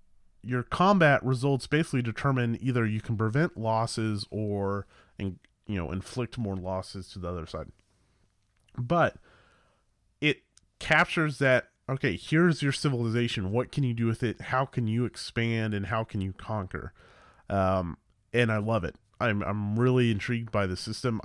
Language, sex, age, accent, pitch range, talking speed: English, male, 30-49, American, 95-125 Hz, 160 wpm